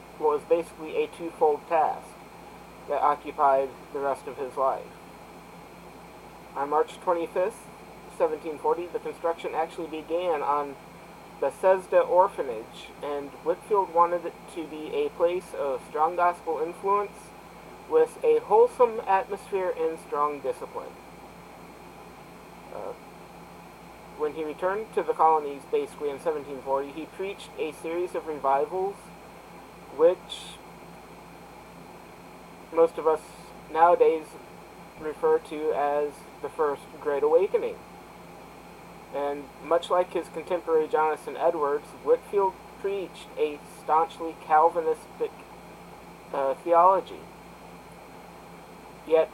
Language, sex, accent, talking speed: English, male, American, 105 wpm